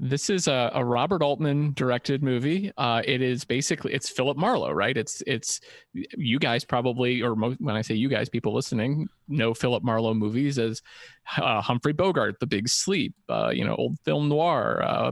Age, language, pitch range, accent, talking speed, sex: 30-49, English, 120-145 Hz, American, 190 wpm, male